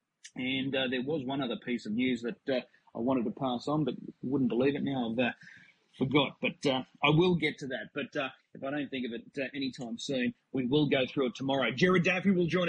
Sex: male